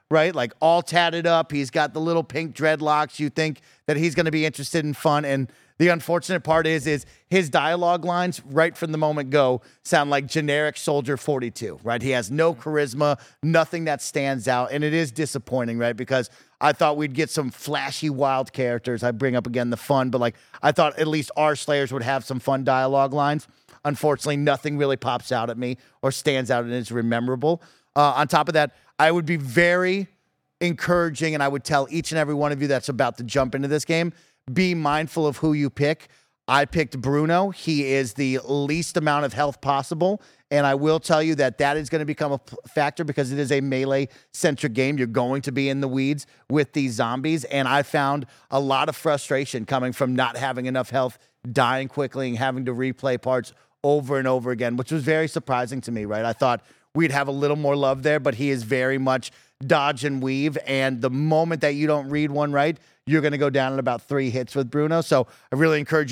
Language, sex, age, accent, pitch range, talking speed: English, male, 30-49, American, 130-155 Hz, 220 wpm